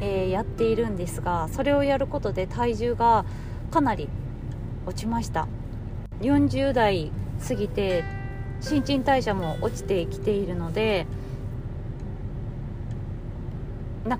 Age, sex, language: 20-39, female, Japanese